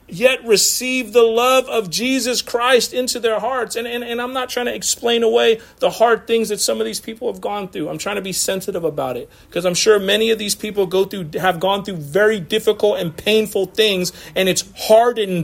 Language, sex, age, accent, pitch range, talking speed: English, male, 40-59, American, 140-215 Hz, 220 wpm